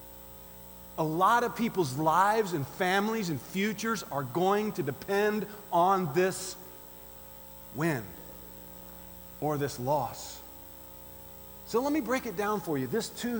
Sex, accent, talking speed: male, American, 130 wpm